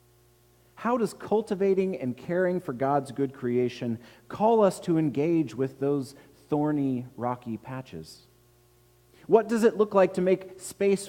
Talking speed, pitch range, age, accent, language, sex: 140 wpm, 110-155 Hz, 30-49, American, English, male